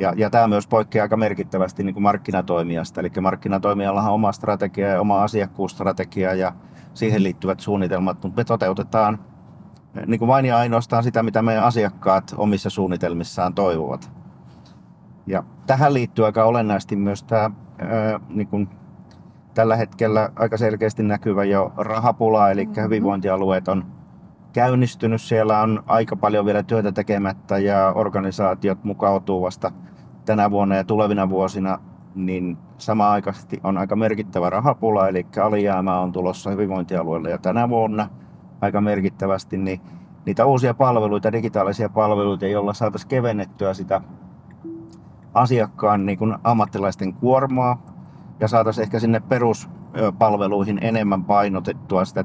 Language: Finnish